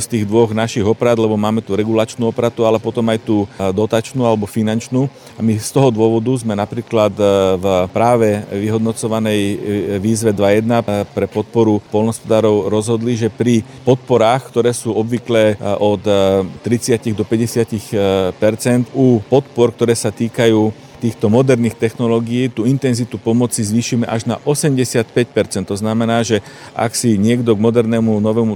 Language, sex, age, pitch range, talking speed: Slovak, male, 40-59, 110-120 Hz, 140 wpm